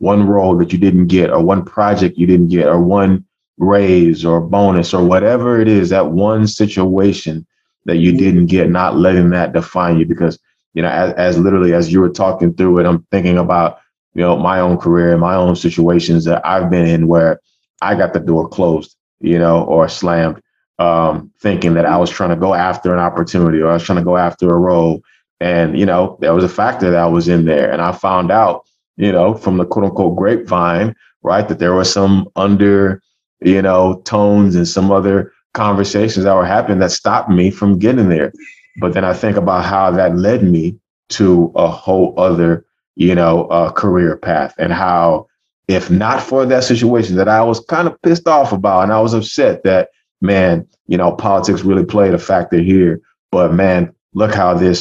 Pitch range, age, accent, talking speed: 85-100 Hz, 20-39, American, 205 wpm